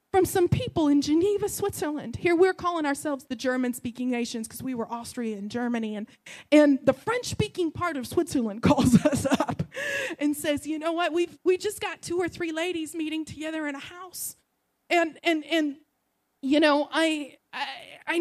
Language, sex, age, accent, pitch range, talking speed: English, female, 30-49, American, 300-410 Hz, 180 wpm